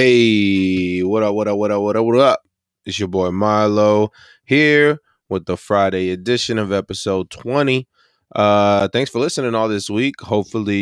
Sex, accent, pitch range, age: male, American, 95-120 Hz, 20-39